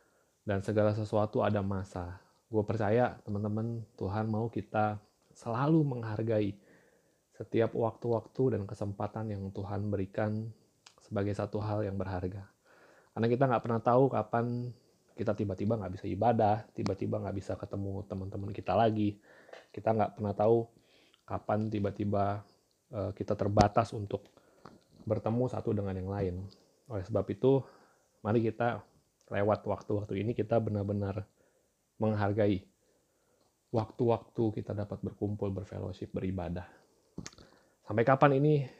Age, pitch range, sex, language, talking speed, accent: 20-39, 100-115 Hz, male, Indonesian, 120 wpm, native